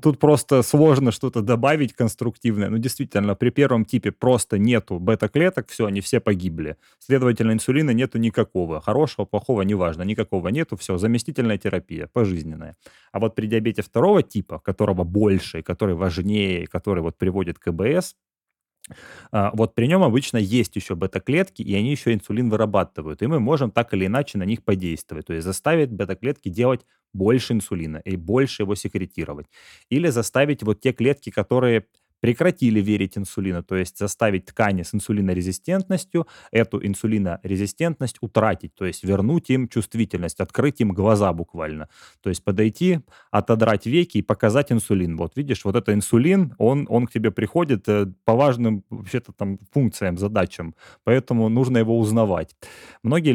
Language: Russian